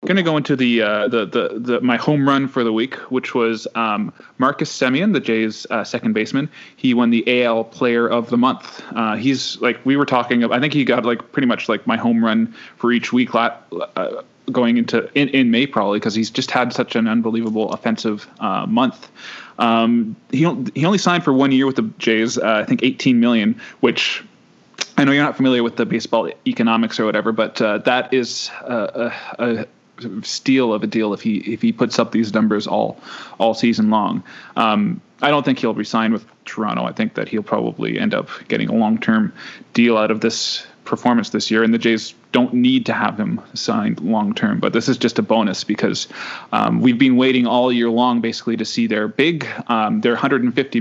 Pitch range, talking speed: 115-140 Hz, 215 wpm